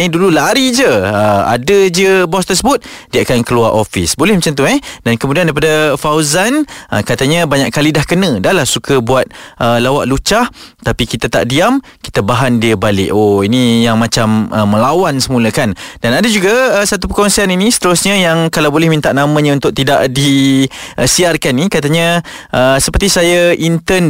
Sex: male